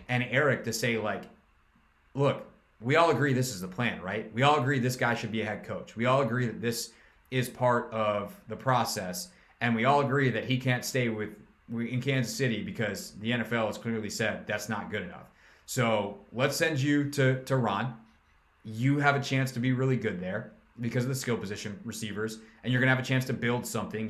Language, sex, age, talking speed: English, male, 30-49, 220 wpm